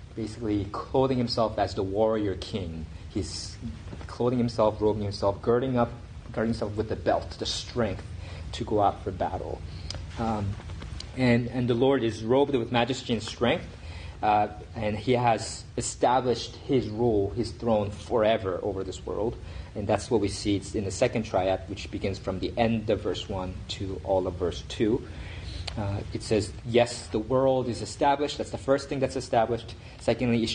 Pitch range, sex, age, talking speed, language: 95-115 Hz, male, 30-49, 175 wpm, English